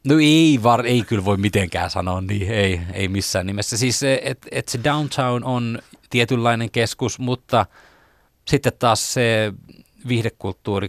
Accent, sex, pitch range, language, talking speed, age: native, male, 90-120 Hz, Finnish, 140 wpm, 30-49